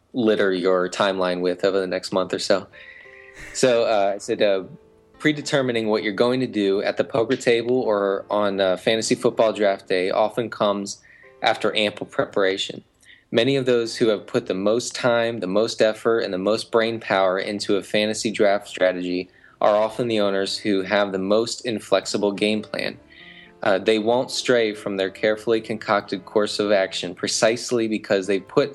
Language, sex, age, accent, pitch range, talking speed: English, male, 20-39, American, 95-115 Hz, 175 wpm